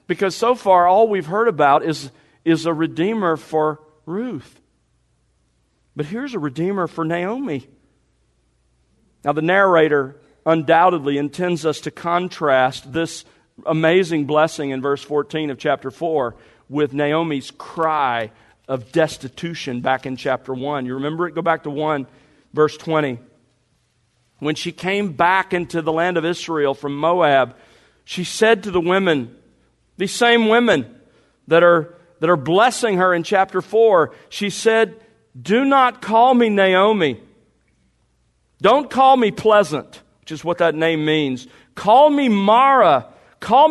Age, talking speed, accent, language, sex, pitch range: 50-69, 140 wpm, American, English, male, 145-200 Hz